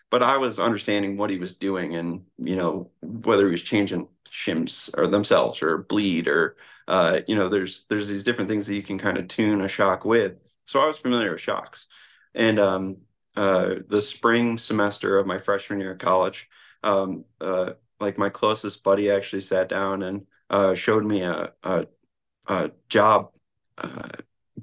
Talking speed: 180 wpm